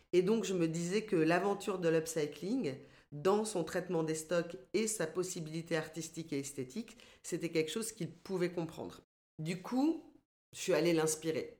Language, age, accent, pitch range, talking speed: French, 40-59, French, 155-190 Hz, 165 wpm